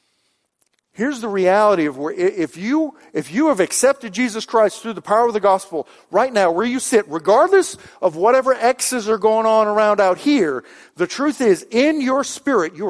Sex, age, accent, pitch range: male, 50-69, American, 195-255 Hz